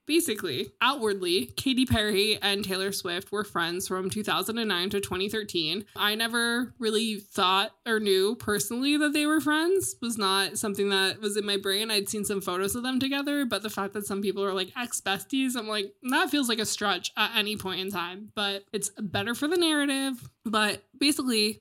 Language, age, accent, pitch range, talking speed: English, 20-39, American, 185-235 Hz, 190 wpm